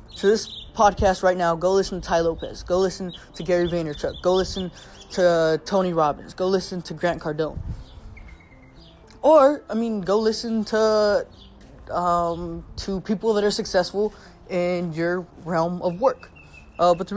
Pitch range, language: 170-210 Hz, English